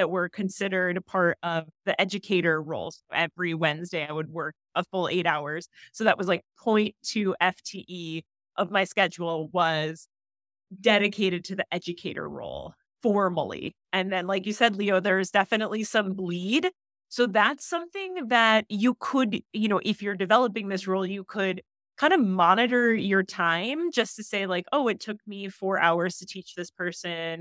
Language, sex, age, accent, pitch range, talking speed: English, female, 30-49, American, 175-210 Hz, 175 wpm